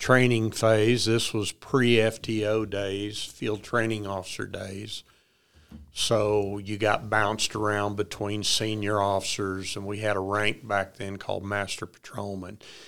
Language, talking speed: English, 130 wpm